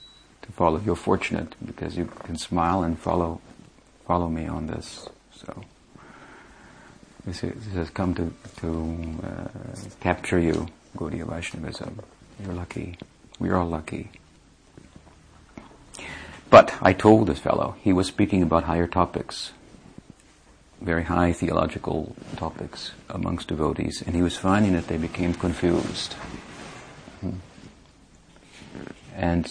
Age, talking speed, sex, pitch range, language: 50-69, 120 wpm, male, 80-95 Hz, English